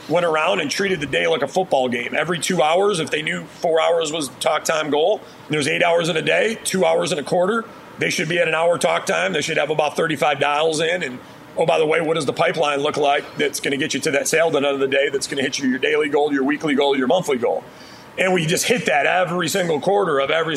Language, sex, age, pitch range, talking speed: English, male, 40-59, 140-170 Hz, 285 wpm